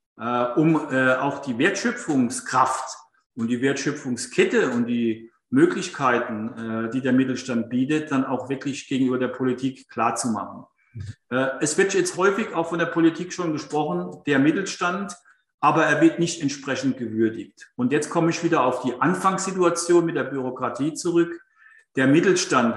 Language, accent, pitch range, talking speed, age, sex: German, German, 130-165 Hz, 150 wpm, 50-69, male